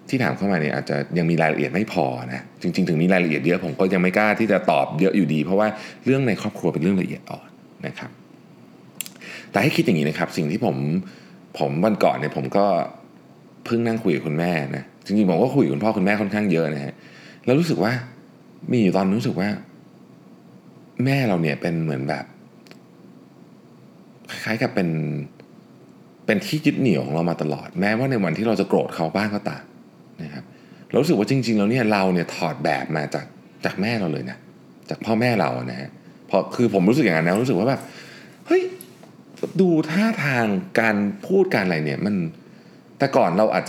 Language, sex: Thai, male